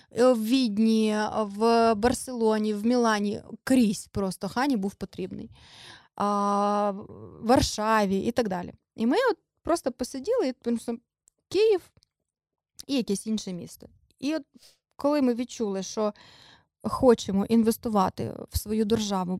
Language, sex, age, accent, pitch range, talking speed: Ukrainian, female, 20-39, native, 210-260 Hz, 125 wpm